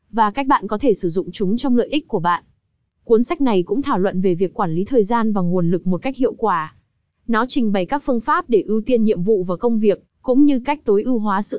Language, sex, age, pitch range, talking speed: Vietnamese, female, 20-39, 195-250 Hz, 275 wpm